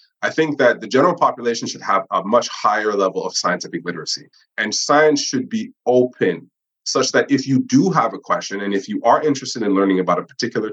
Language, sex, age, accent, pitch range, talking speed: English, male, 30-49, American, 105-150 Hz, 215 wpm